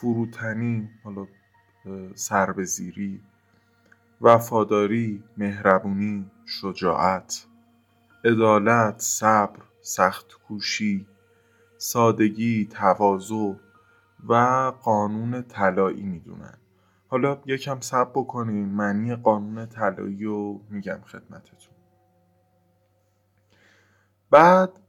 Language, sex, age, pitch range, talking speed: Persian, male, 20-39, 100-115 Hz, 65 wpm